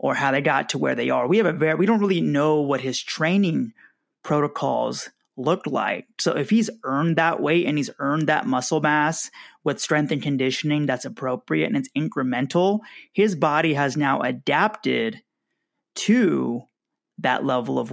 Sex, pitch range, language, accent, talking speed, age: male, 135-185 Hz, English, American, 175 wpm, 30-49